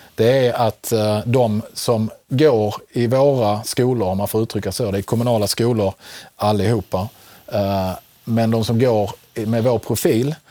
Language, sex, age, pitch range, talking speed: Swedish, male, 40-59, 105-125 Hz, 150 wpm